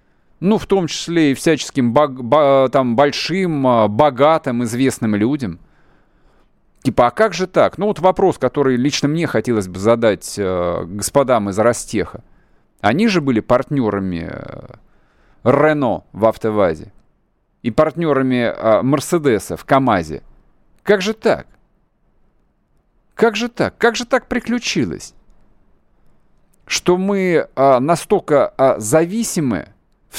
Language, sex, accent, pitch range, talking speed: Russian, male, native, 135-195 Hz, 115 wpm